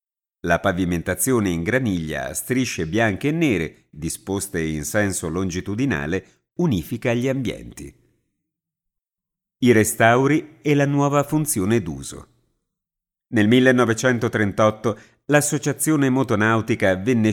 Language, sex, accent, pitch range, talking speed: Italian, male, native, 100-135 Hz, 95 wpm